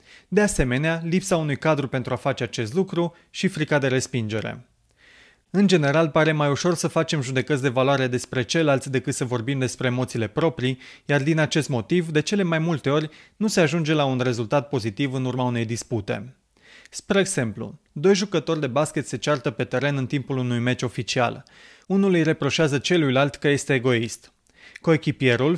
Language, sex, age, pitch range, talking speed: Romanian, male, 30-49, 130-165 Hz, 175 wpm